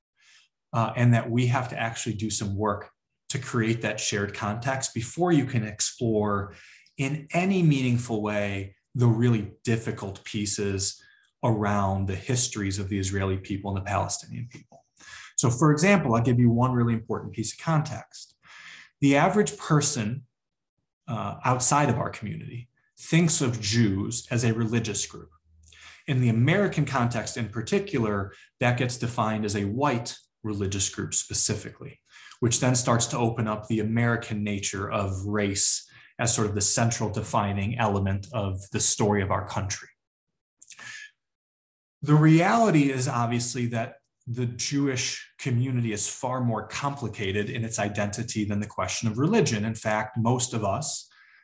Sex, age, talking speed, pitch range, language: male, 20-39, 150 wpm, 105-125 Hz, English